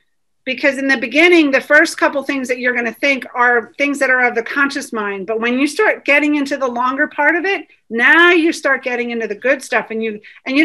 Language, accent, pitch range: English, American, 230-310 Hz